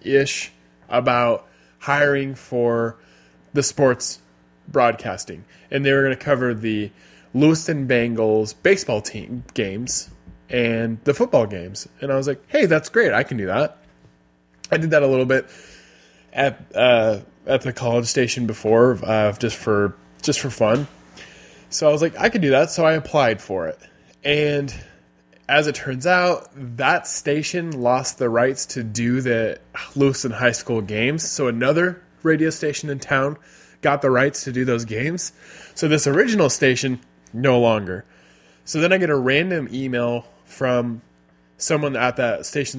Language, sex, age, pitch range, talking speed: English, male, 20-39, 105-140 Hz, 160 wpm